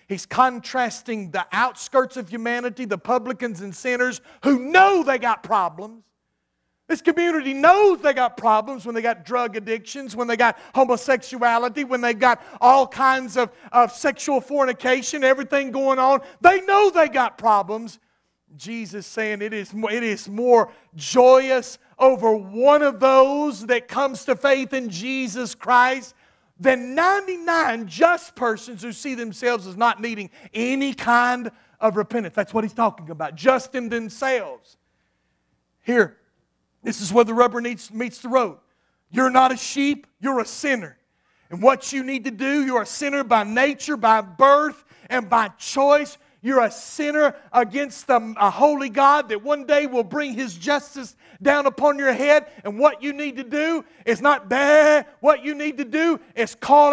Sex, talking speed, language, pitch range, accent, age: male, 165 wpm, English, 230-285 Hz, American, 40-59